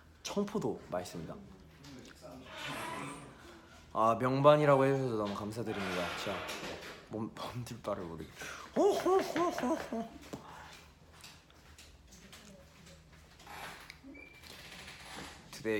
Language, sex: English, male